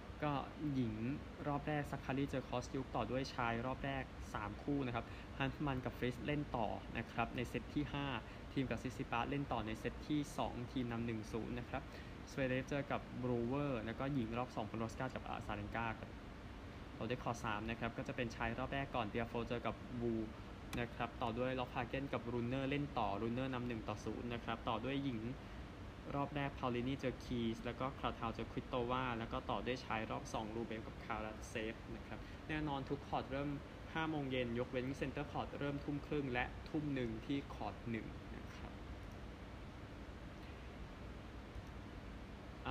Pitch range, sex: 110-130 Hz, male